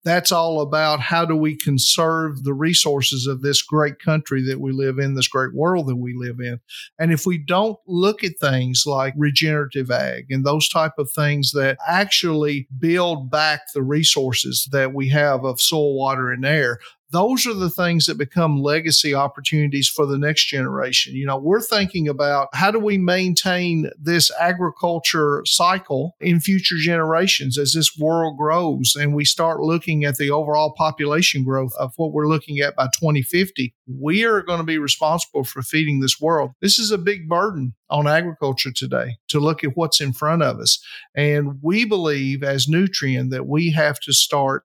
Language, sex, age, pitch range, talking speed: English, male, 50-69, 135-165 Hz, 185 wpm